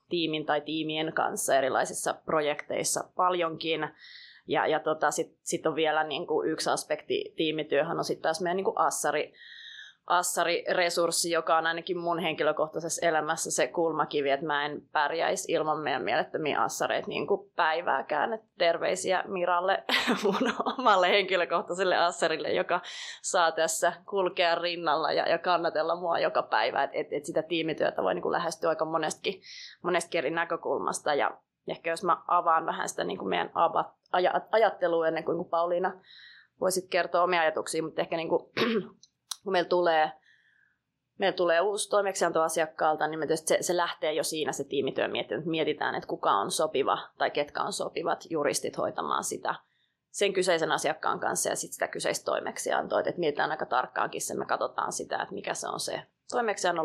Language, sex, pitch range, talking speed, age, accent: Finnish, female, 160-185 Hz, 150 wpm, 20-39, native